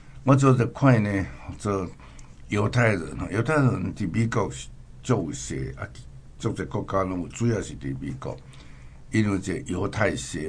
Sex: male